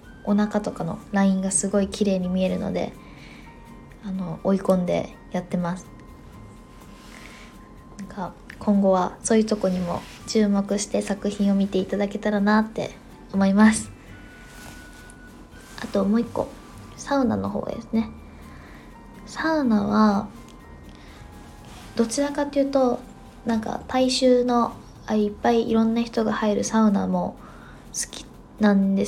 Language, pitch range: Japanese, 200-235 Hz